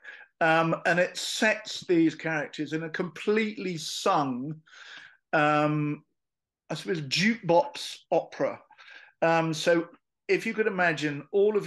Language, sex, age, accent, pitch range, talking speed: English, male, 50-69, British, 140-180 Hz, 120 wpm